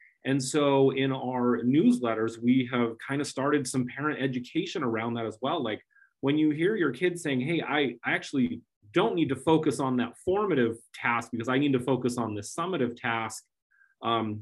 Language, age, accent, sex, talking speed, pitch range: English, 30-49, American, male, 190 wpm, 115-140 Hz